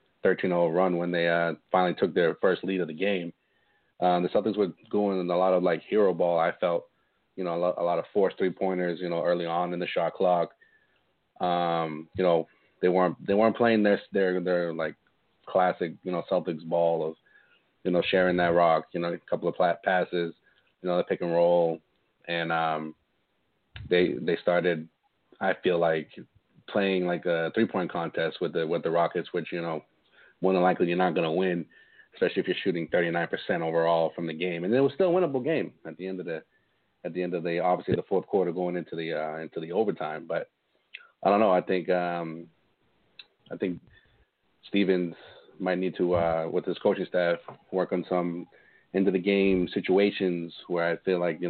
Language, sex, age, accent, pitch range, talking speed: English, male, 30-49, American, 85-90 Hz, 205 wpm